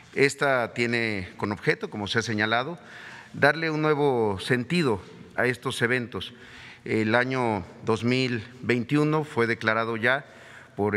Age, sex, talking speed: 40-59, male, 120 wpm